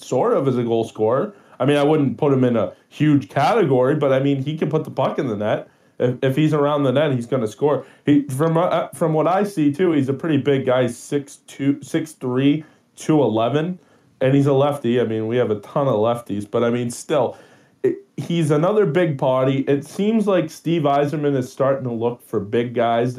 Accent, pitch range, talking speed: American, 130-155 Hz, 230 wpm